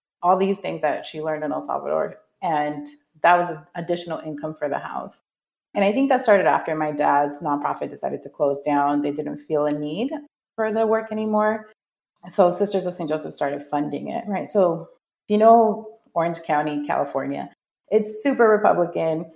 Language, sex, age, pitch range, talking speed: English, female, 30-49, 145-195 Hz, 175 wpm